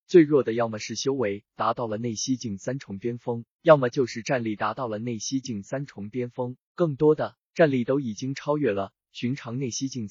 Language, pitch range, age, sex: Chinese, 110-140 Hz, 20-39, male